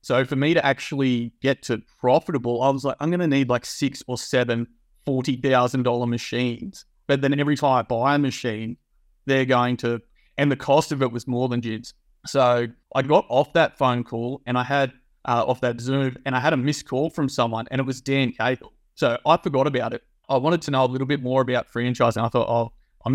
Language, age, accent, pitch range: English, 30-49, Australian, 120-140 Hz